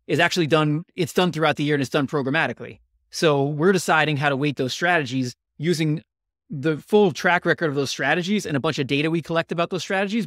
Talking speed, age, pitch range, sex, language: 220 wpm, 30-49, 135-170 Hz, male, English